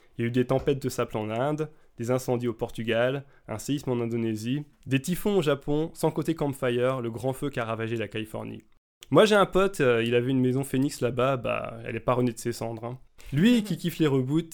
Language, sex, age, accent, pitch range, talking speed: French, male, 20-39, French, 120-155 Hz, 235 wpm